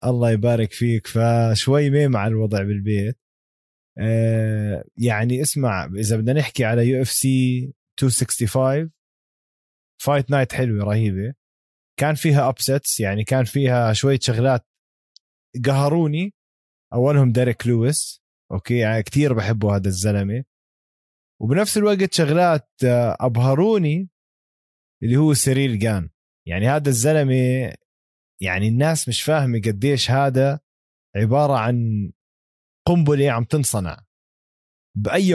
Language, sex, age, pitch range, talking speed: Arabic, male, 20-39, 110-145 Hz, 105 wpm